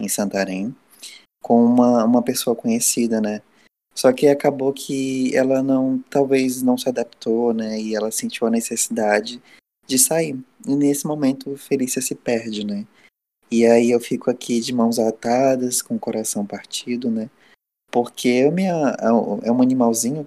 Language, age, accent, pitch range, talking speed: Portuguese, 20-39, Brazilian, 110-145 Hz, 150 wpm